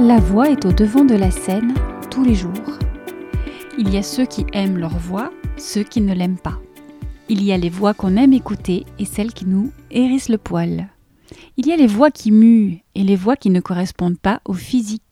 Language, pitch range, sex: French, 185-240 Hz, female